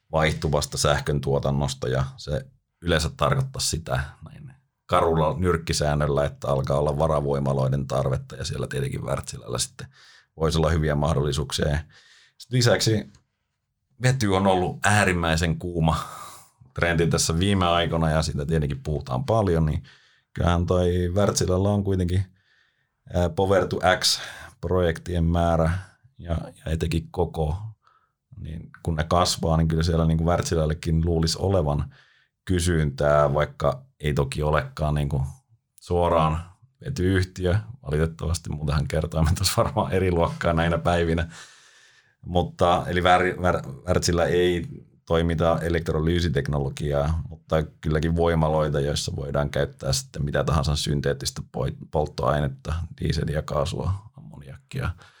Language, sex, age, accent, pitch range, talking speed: Finnish, male, 30-49, native, 75-90 Hz, 110 wpm